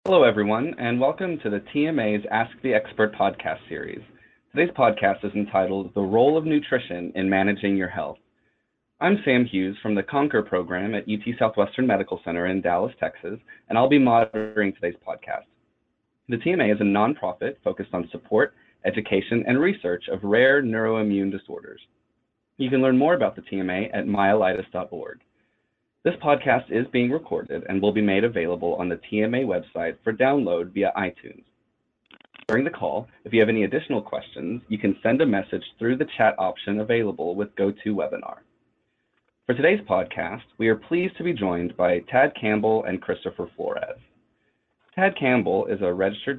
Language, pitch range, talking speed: English, 100-130 Hz, 165 wpm